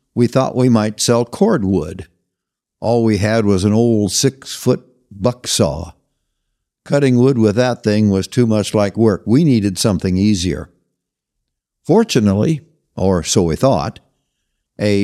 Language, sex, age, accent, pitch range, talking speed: English, male, 60-79, American, 100-130 Hz, 145 wpm